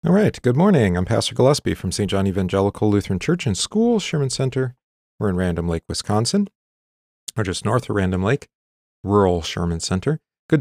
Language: English